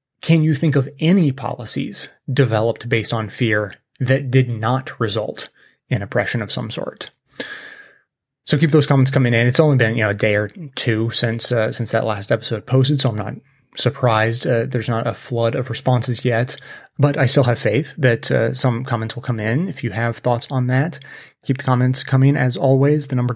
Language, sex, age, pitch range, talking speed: English, male, 30-49, 120-140 Hz, 205 wpm